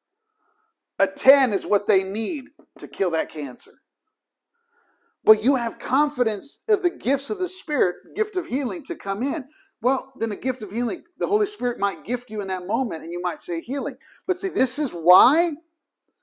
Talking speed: 190 wpm